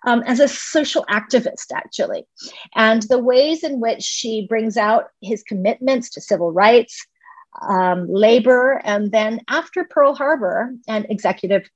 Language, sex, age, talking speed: English, female, 40-59, 145 wpm